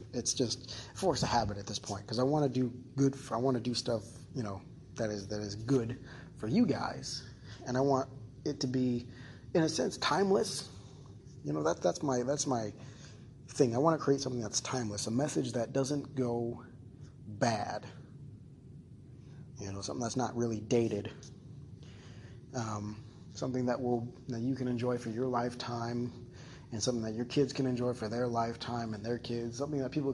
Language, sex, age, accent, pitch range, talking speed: English, male, 30-49, American, 115-135 Hz, 190 wpm